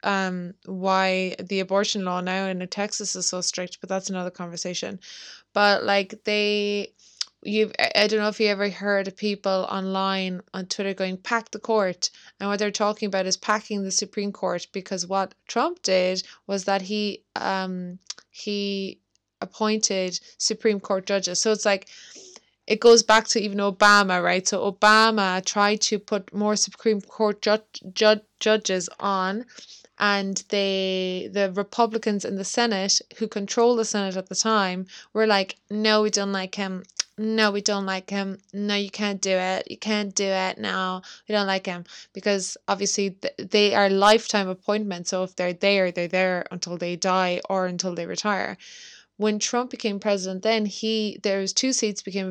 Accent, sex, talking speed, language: Irish, female, 170 wpm, English